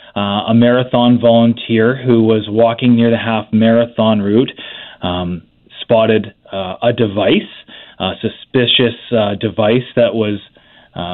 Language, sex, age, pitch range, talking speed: English, male, 30-49, 110-125 Hz, 130 wpm